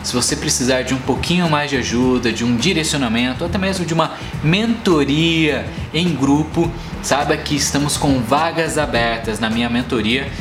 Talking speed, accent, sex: 160 wpm, Brazilian, male